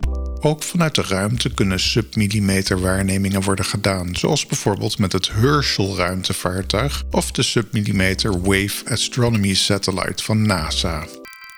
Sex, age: male, 50-69